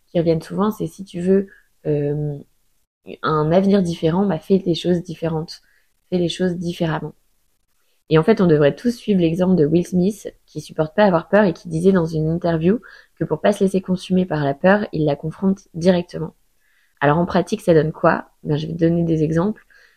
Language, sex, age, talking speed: French, female, 20-39, 205 wpm